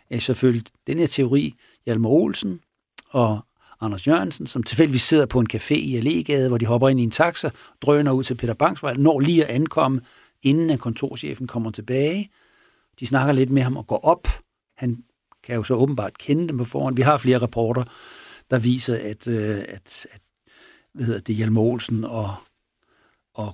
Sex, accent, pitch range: male, native, 115-145 Hz